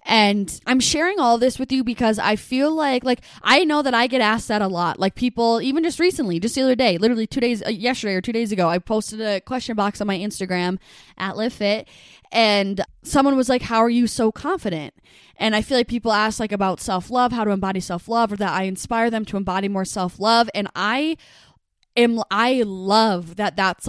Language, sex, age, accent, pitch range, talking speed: English, female, 10-29, American, 200-250 Hz, 220 wpm